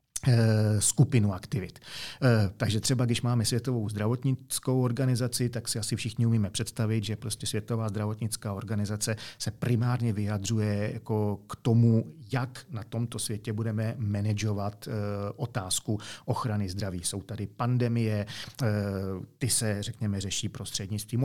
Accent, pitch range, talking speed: native, 105-125 Hz, 120 wpm